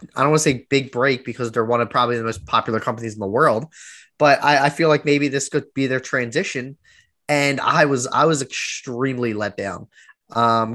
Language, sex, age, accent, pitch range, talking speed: English, male, 10-29, American, 115-145 Hz, 220 wpm